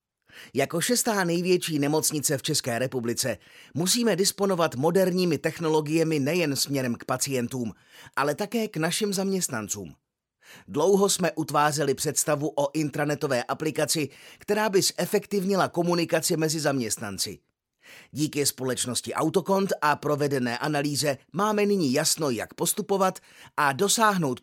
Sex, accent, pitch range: male, native, 135-175 Hz